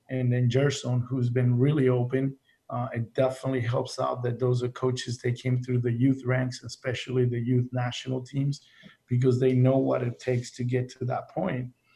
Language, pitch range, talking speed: English, 125-135 Hz, 190 wpm